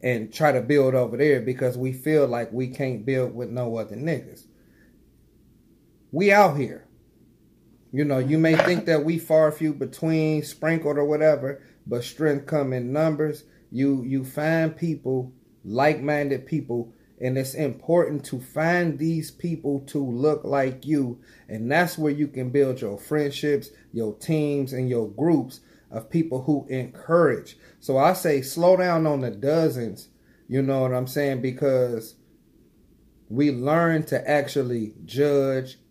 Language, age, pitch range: English, 30-49, 130-155 Hz